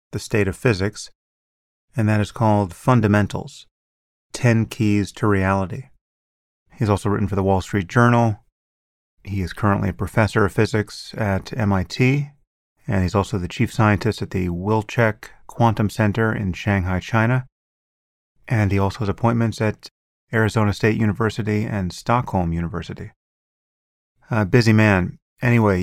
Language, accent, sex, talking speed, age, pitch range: English, American, male, 140 wpm, 30-49, 95-110 Hz